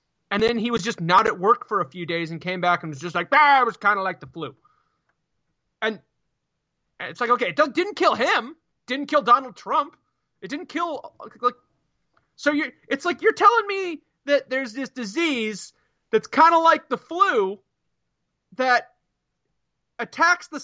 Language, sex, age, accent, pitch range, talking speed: English, male, 30-49, American, 200-285 Hz, 185 wpm